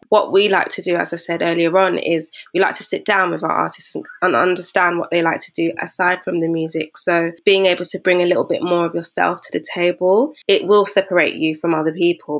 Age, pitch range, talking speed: 20-39, 165-185 Hz, 245 wpm